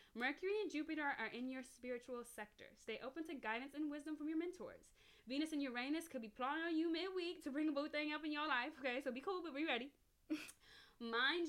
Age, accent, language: 10-29, American, English